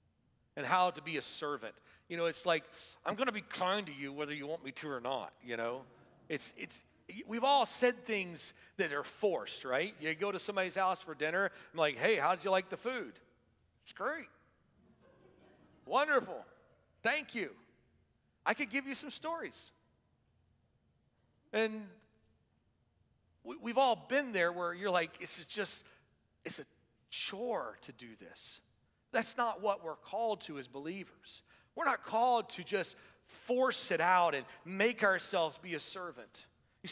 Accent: American